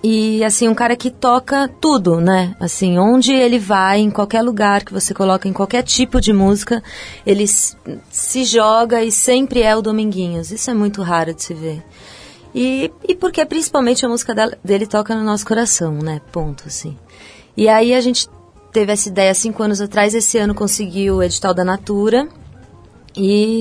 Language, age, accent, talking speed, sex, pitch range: Portuguese, 30-49, Brazilian, 180 wpm, female, 180-215 Hz